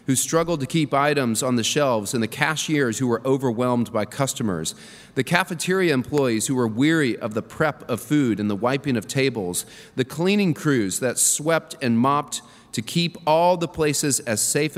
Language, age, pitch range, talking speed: English, 30-49, 120-155 Hz, 185 wpm